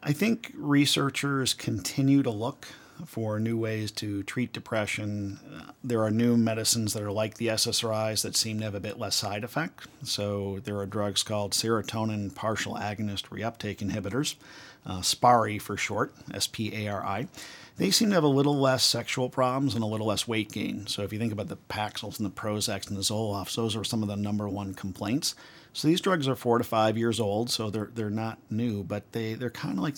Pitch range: 100-120 Hz